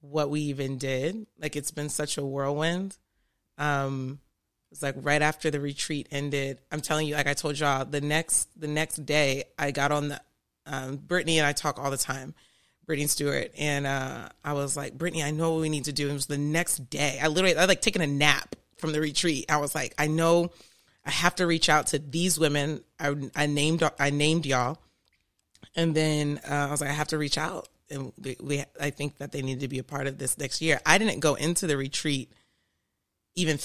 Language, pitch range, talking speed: English, 140-160 Hz, 225 wpm